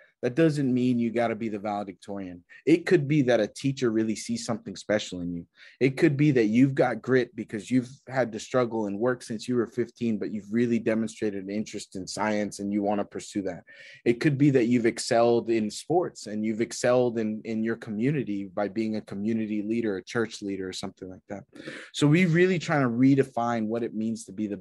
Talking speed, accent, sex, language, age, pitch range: 220 wpm, American, male, English, 20-39, 105-125 Hz